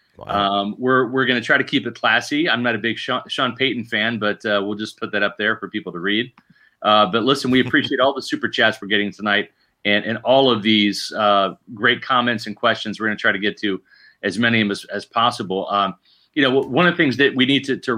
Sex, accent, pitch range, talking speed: male, American, 105-140 Hz, 260 wpm